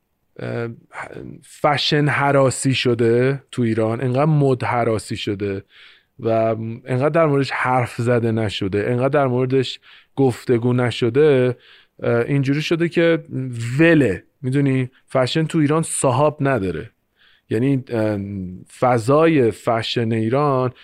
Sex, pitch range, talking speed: male, 115-140 Hz, 95 wpm